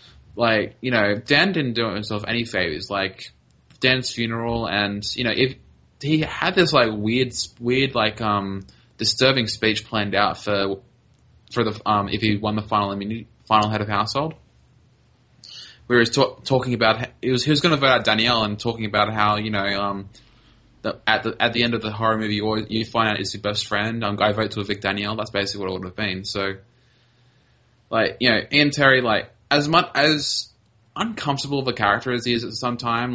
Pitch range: 105-120 Hz